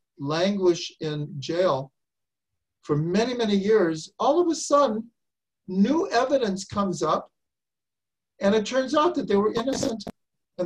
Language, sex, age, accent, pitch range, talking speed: English, male, 50-69, American, 150-225 Hz, 135 wpm